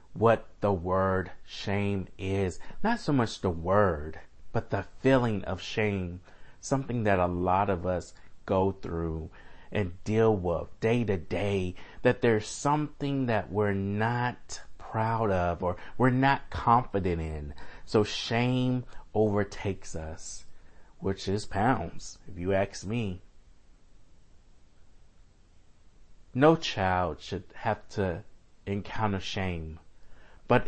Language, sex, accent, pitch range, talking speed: English, male, American, 85-110 Hz, 120 wpm